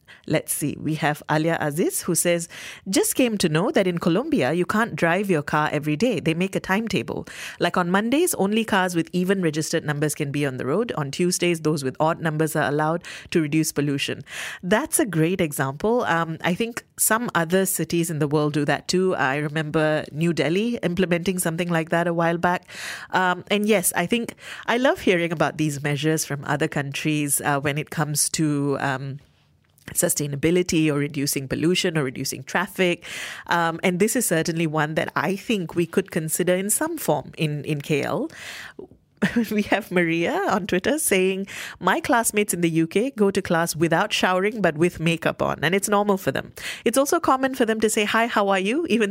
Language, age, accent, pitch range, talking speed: English, 30-49, Indian, 155-200 Hz, 195 wpm